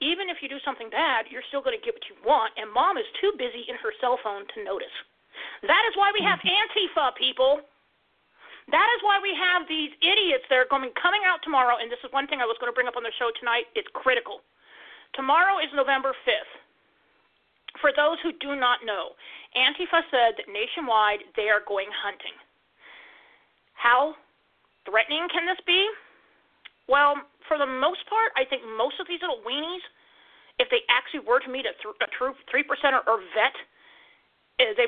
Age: 40-59